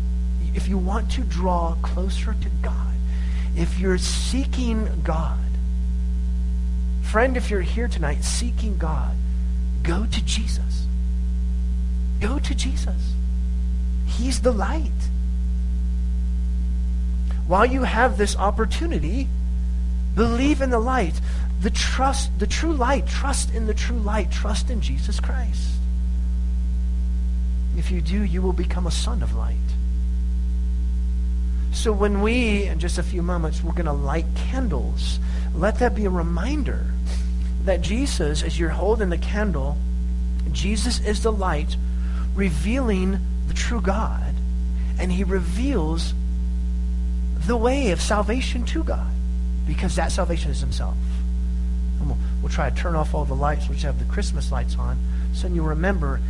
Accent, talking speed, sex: American, 135 wpm, male